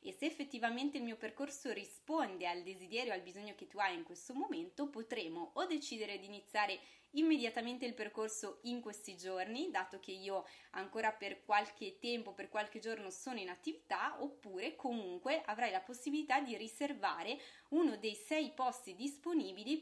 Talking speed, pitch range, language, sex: 165 wpm, 195-265 Hz, Italian, female